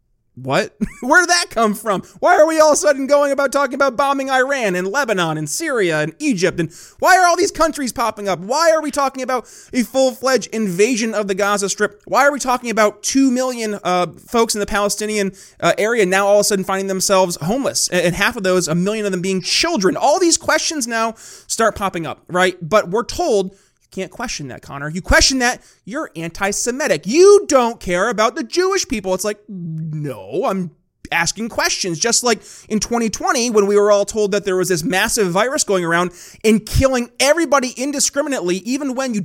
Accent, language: American, English